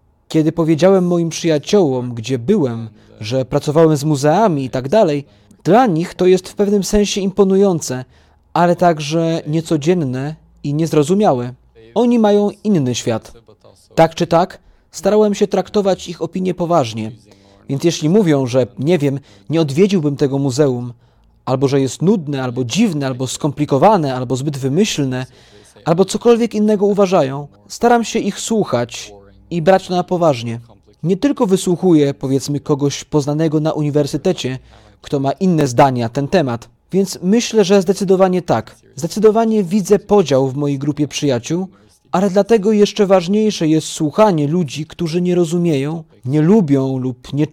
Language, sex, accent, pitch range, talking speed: Polish, male, native, 135-190 Hz, 145 wpm